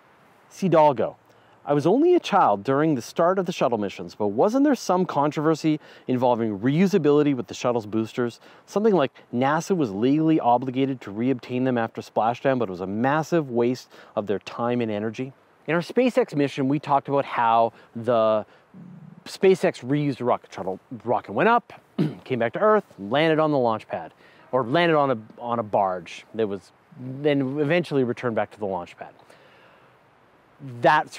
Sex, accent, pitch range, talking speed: male, American, 120-170 Hz, 170 wpm